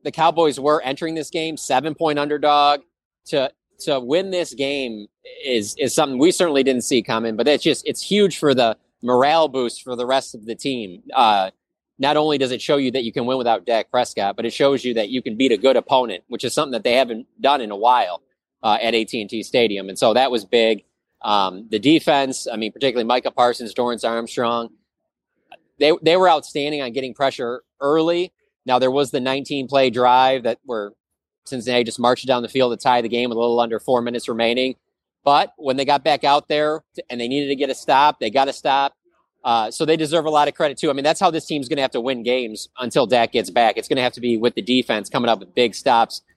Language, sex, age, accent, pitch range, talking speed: English, male, 20-39, American, 120-145 Hz, 235 wpm